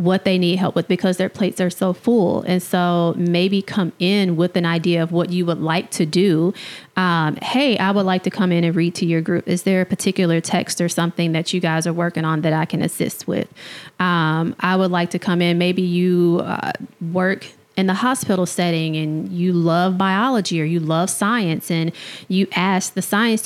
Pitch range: 170-195 Hz